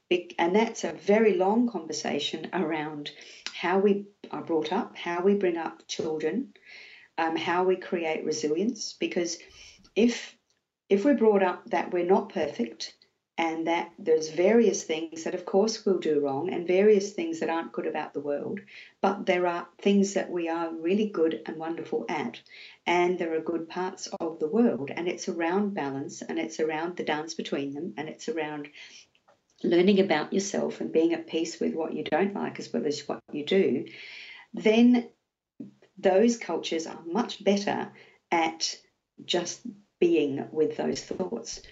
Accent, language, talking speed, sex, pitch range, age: Australian, English, 165 wpm, female, 160-200 Hz, 50-69